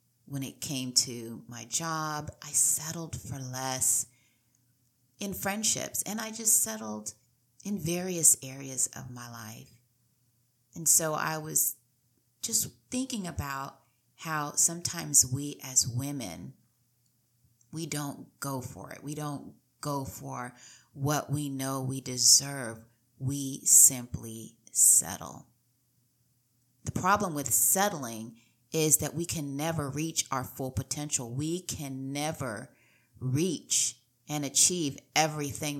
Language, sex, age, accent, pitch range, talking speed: English, female, 30-49, American, 120-150 Hz, 120 wpm